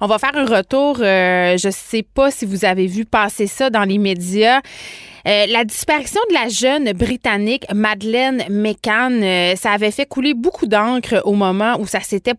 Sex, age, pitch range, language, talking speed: female, 30-49, 195-245 Hz, French, 190 wpm